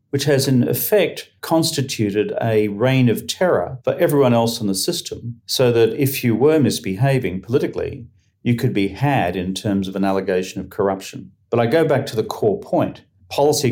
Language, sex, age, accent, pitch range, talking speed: English, male, 50-69, Australian, 95-125 Hz, 185 wpm